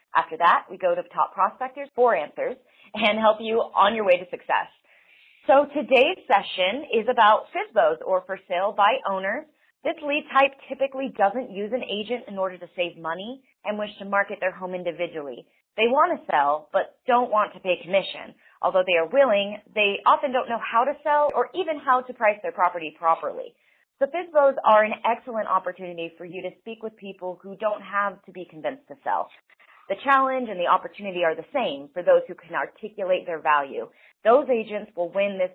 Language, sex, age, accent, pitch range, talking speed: English, female, 30-49, American, 185-255 Hz, 200 wpm